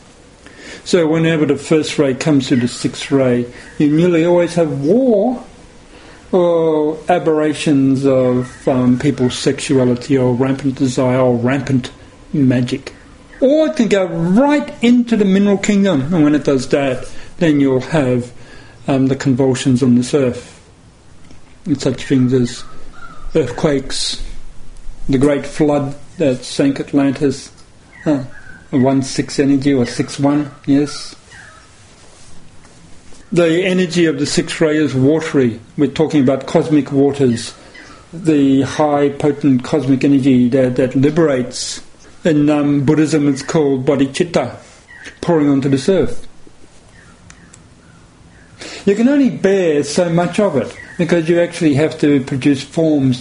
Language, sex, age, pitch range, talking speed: English, male, 50-69, 130-160 Hz, 130 wpm